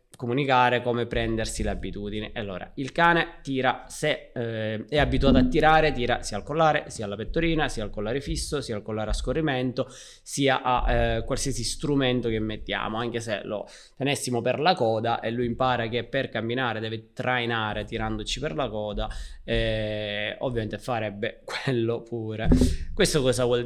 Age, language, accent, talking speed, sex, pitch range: 20-39, Italian, native, 160 wpm, male, 110-125 Hz